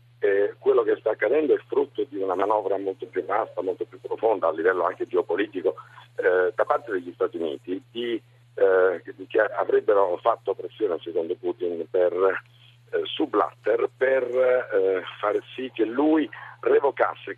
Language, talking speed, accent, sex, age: Italian, 160 wpm, native, male, 50-69